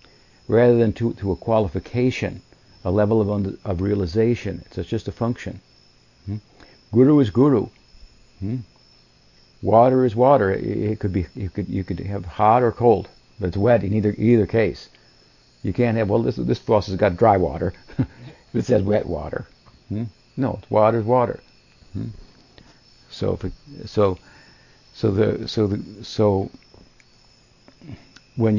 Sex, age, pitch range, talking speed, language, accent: male, 60-79, 95-120 Hz, 155 wpm, English, American